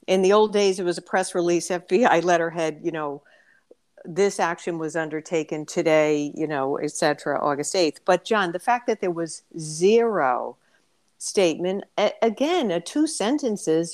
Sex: female